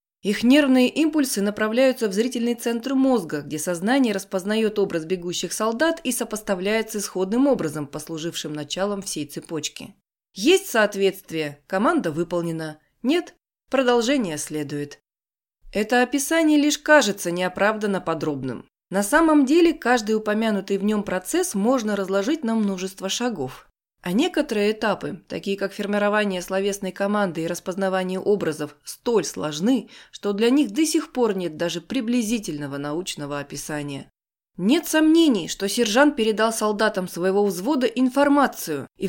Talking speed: 125 wpm